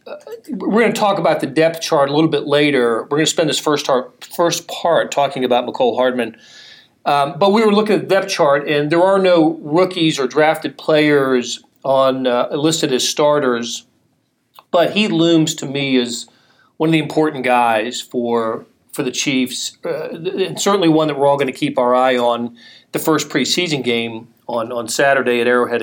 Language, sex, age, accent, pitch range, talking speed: English, male, 40-59, American, 125-165 Hz, 195 wpm